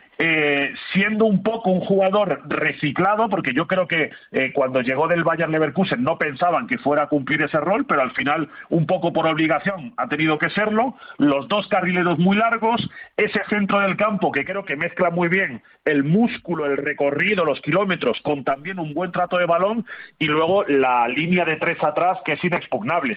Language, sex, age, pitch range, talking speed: Spanish, male, 40-59, 150-195 Hz, 190 wpm